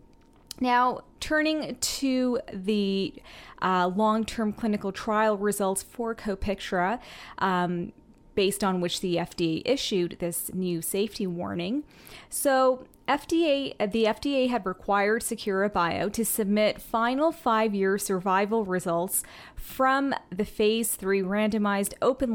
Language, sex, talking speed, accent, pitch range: English, female, 115 wpm, American, 190-240 Hz